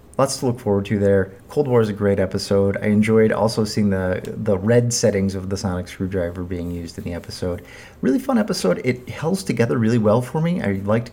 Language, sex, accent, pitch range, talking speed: English, male, American, 95-115 Hz, 220 wpm